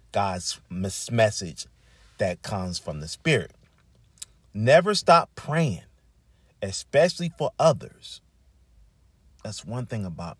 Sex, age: male, 40-59